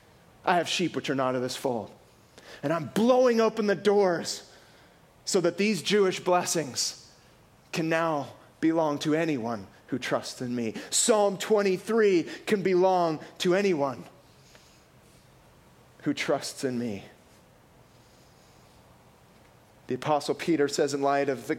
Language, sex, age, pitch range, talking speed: English, male, 30-49, 145-240 Hz, 130 wpm